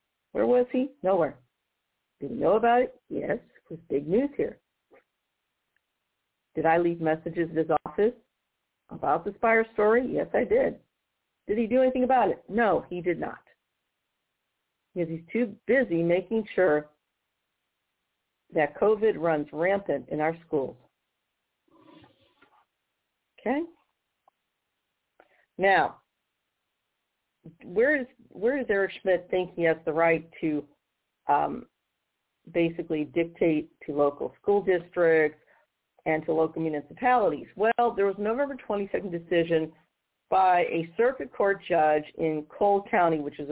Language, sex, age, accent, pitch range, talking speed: English, female, 50-69, American, 160-215 Hz, 130 wpm